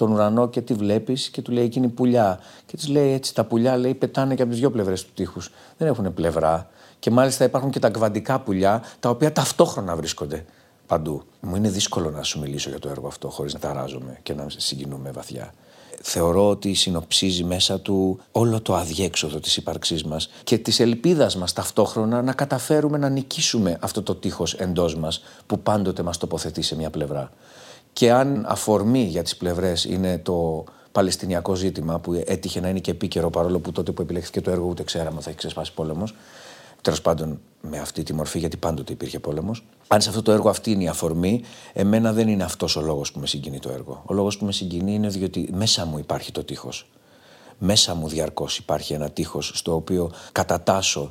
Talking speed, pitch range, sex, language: 200 wpm, 80-110 Hz, male, Greek